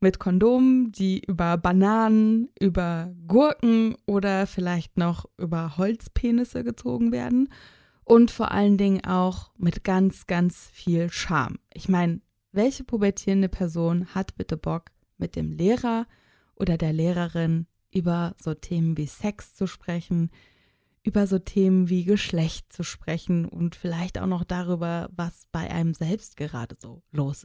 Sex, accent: female, German